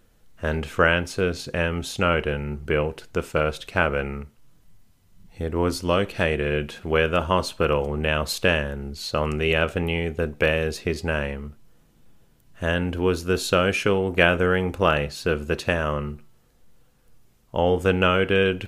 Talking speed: 110 wpm